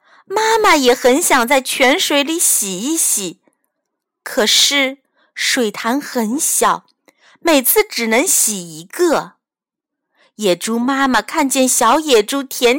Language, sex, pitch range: Chinese, female, 230-340 Hz